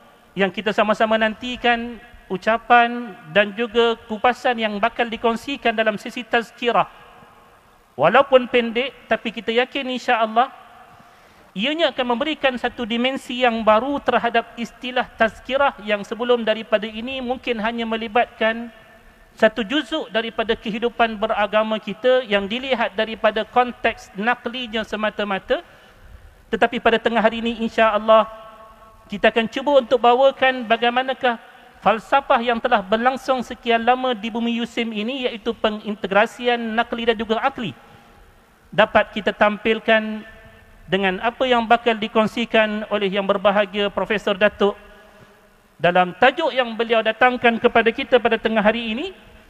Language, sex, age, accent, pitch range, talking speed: English, male, 40-59, Indonesian, 220-245 Hz, 125 wpm